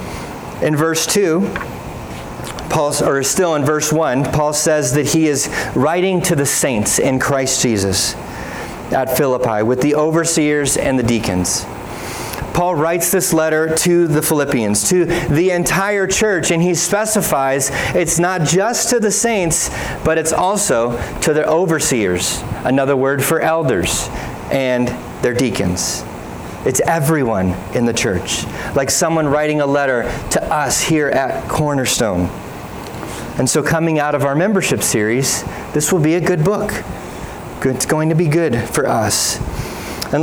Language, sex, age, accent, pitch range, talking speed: English, male, 30-49, American, 125-170 Hz, 145 wpm